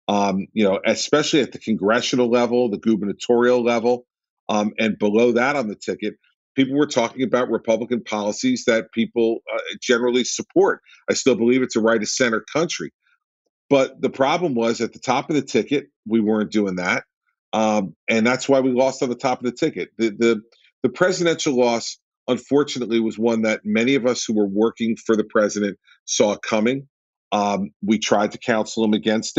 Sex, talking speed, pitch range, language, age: male, 185 wpm, 105-125 Hz, English, 50-69